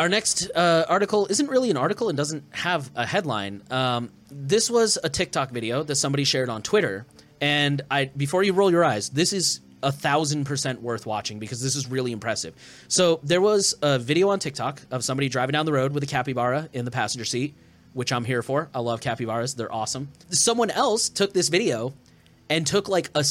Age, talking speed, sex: 20-39, 205 wpm, male